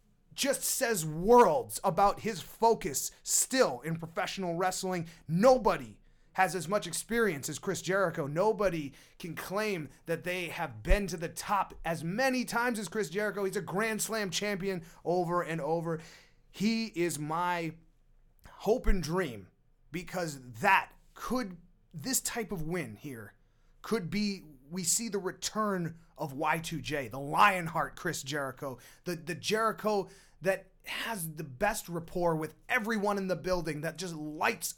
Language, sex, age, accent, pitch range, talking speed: English, male, 30-49, American, 150-195 Hz, 145 wpm